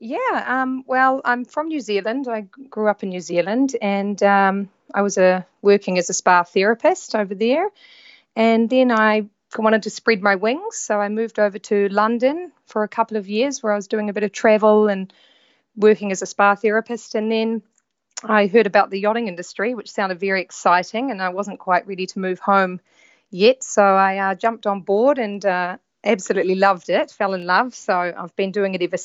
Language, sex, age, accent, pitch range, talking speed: English, female, 30-49, Australian, 185-225 Hz, 205 wpm